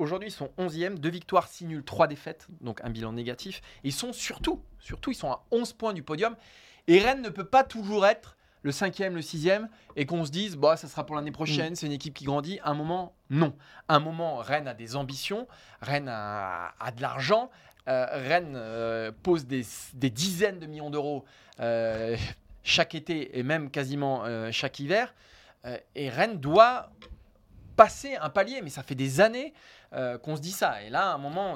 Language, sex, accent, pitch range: French, male, French, 120-180 Hz